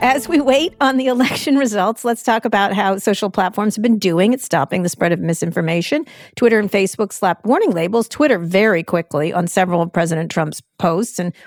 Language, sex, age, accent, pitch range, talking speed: English, female, 50-69, American, 165-215 Hz, 200 wpm